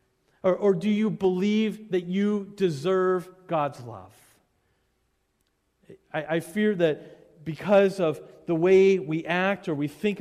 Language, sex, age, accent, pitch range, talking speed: English, male, 40-59, American, 120-170 Hz, 135 wpm